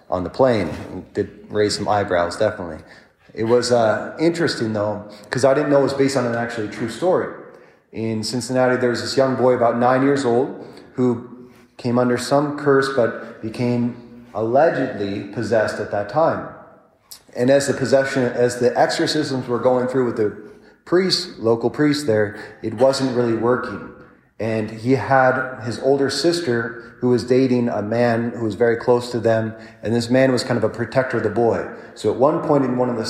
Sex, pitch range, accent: male, 110-130 Hz, American